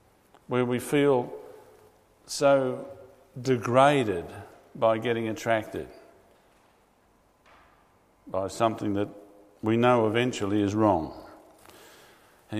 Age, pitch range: 50-69, 115-135 Hz